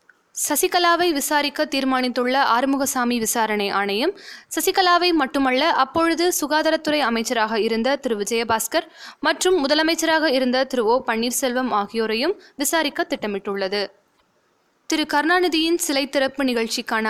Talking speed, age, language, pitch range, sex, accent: 100 wpm, 20-39, Tamil, 235-320 Hz, female, native